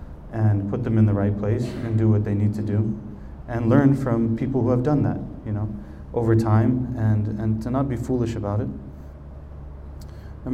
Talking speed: 200 wpm